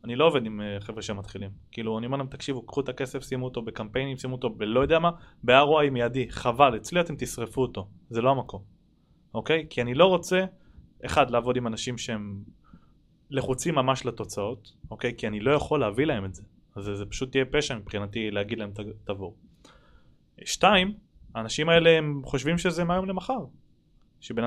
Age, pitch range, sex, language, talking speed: 20-39, 115-170 Hz, male, Hebrew, 190 wpm